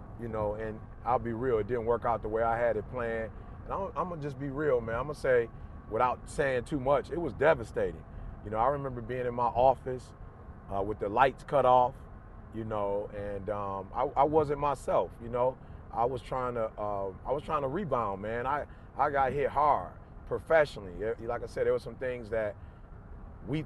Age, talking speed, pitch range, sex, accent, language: 30-49, 215 wpm, 110-145 Hz, male, American, English